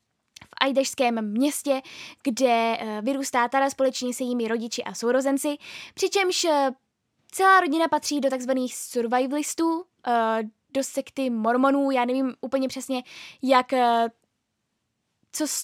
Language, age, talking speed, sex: Czech, 10-29, 125 wpm, female